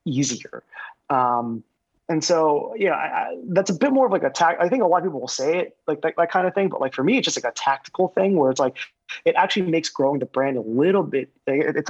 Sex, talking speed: male, 270 wpm